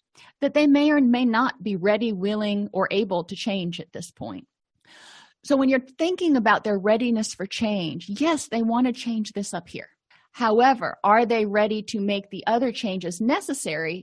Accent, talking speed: American, 185 wpm